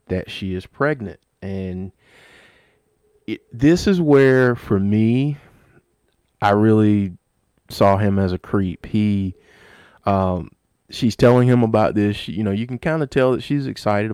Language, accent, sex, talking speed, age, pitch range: English, American, male, 155 wpm, 30-49, 95-120 Hz